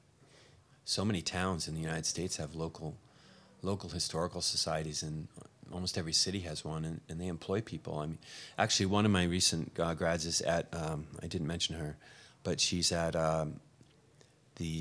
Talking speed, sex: 180 wpm, male